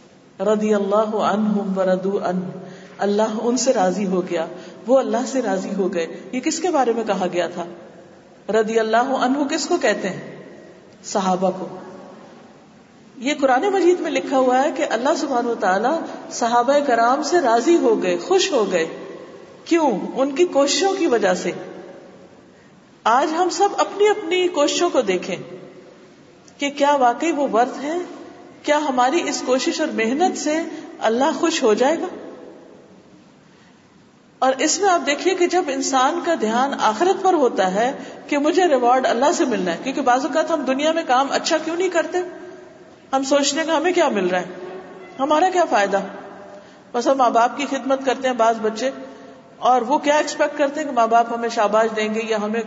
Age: 50-69